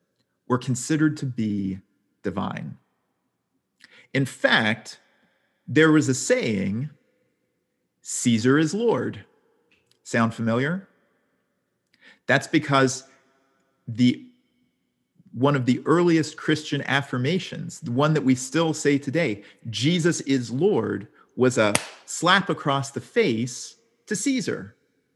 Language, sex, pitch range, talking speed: English, male, 110-155 Hz, 105 wpm